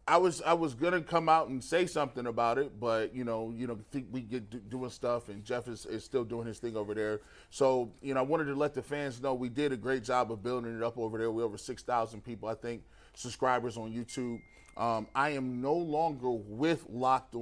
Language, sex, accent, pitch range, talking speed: English, male, American, 115-135 Hz, 245 wpm